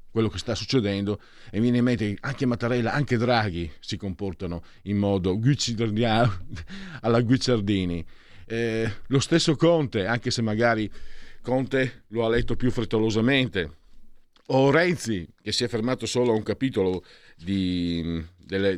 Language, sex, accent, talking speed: Italian, male, native, 140 wpm